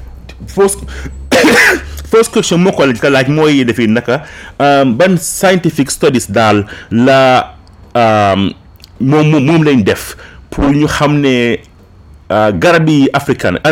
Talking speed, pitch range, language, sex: 105 wpm, 95-140 Hz, English, male